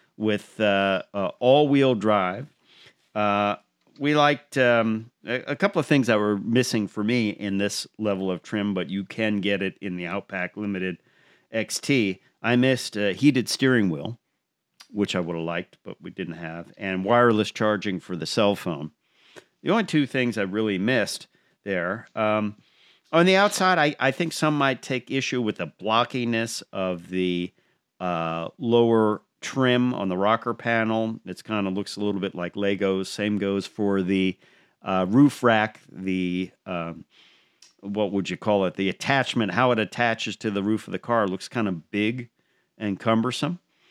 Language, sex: English, male